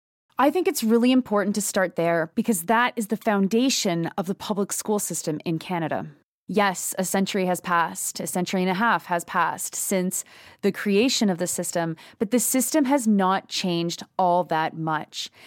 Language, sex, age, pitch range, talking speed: English, female, 30-49, 175-210 Hz, 180 wpm